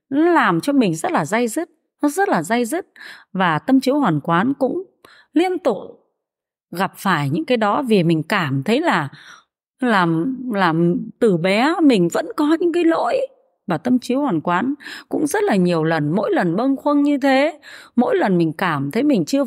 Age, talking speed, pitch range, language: 20-39, 195 wpm, 175-275 Hz, Vietnamese